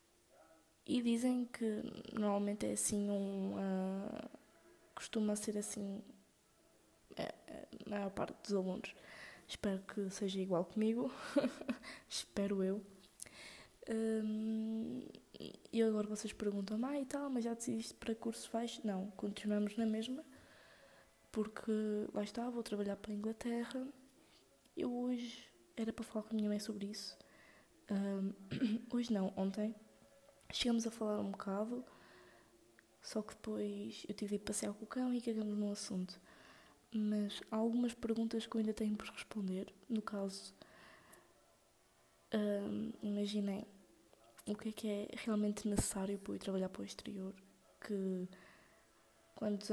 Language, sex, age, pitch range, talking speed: Portuguese, female, 20-39, 200-225 Hz, 140 wpm